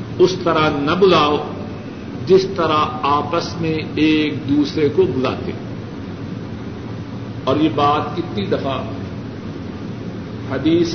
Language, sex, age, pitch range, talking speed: Urdu, male, 50-69, 115-170 Hz, 105 wpm